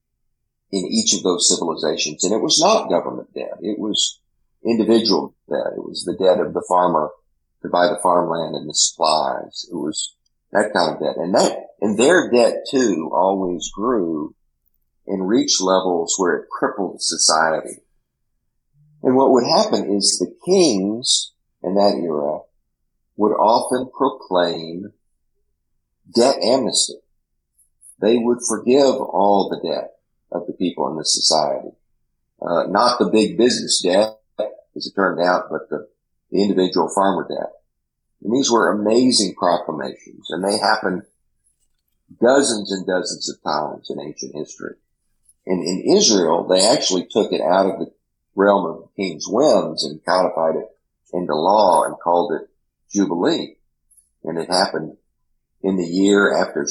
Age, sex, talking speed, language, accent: 50-69, male, 150 wpm, English, American